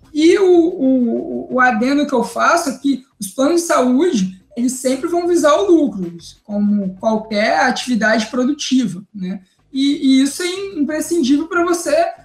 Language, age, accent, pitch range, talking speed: Portuguese, 20-39, Brazilian, 235-320 Hz, 155 wpm